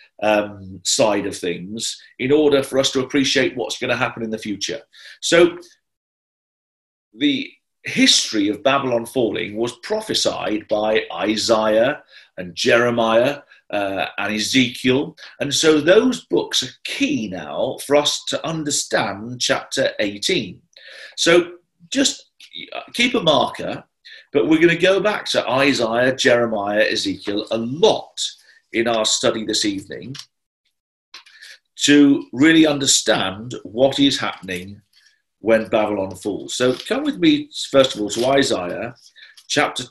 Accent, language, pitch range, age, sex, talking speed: British, English, 115-175 Hz, 40-59, male, 130 wpm